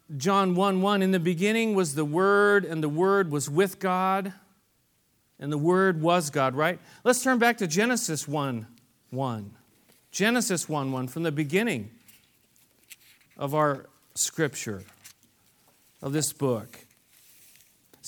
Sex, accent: male, American